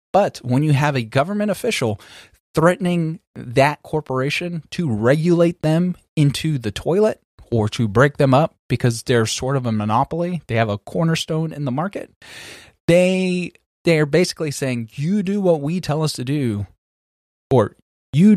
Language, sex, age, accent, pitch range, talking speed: English, male, 30-49, American, 110-150 Hz, 155 wpm